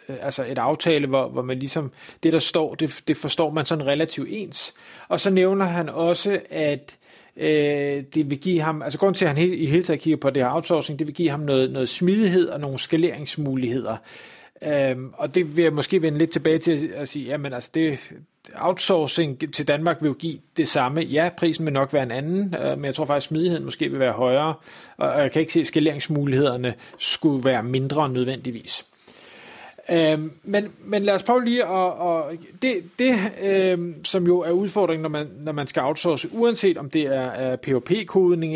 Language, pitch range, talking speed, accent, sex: Danish, 145-175 Hz, 210 wpm, native, male